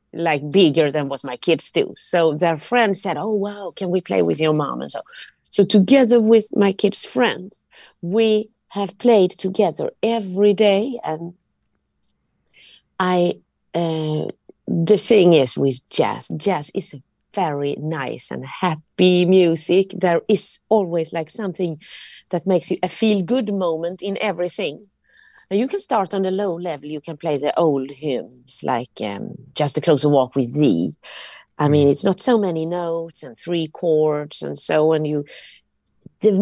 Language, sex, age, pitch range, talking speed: English, female, 30-49, 165-215 Hz, 165 wpm